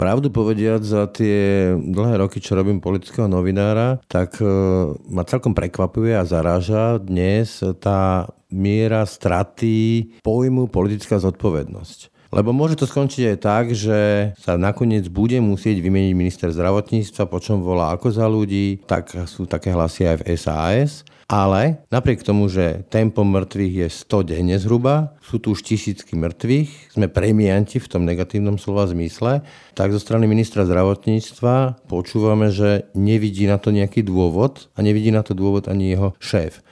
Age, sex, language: 50-69, male, Slovak